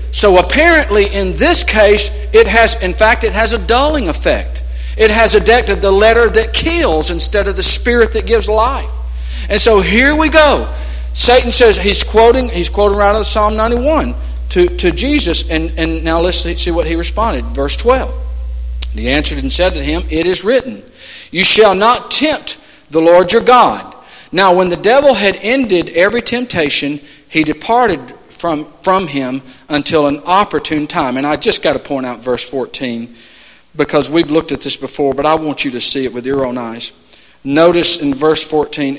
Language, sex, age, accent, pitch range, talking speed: English, male, 50-69, American, 145-210 Hz, 185 wpm